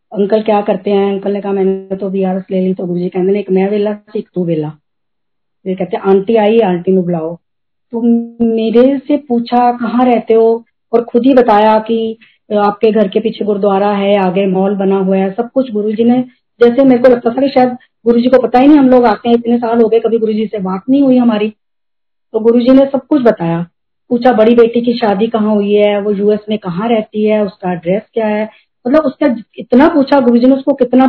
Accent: native